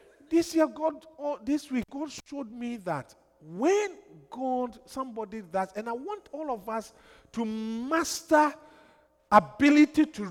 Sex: male